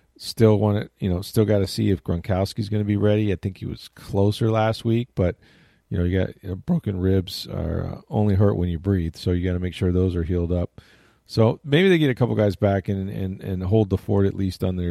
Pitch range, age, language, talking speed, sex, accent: 85-110 Hz, 40-59, English, 265 wpm, male, American